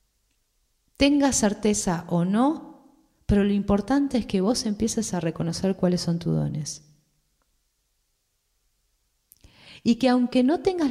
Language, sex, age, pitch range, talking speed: Spanish, female, 40-59, 160-230 Hz, 120 wpm